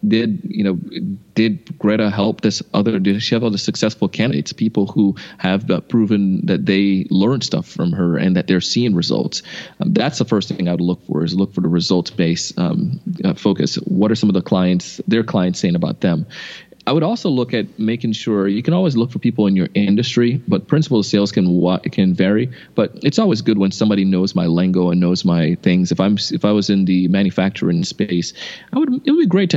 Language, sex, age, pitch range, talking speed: English, male, 30-49, 90-110 Hz, 225 wpm